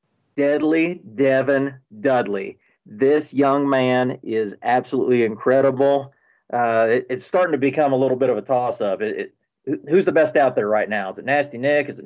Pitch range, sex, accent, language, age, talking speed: 110-140 Hz, male, American, English, 40-59, 180 wpm